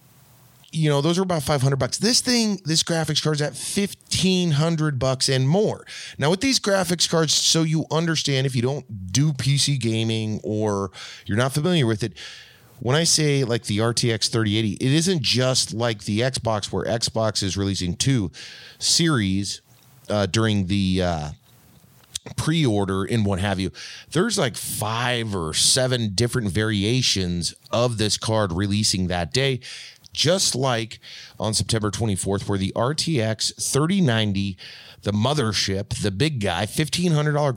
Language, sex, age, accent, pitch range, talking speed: English, male, 30-49, American, 105-140 Hz, 150 wpm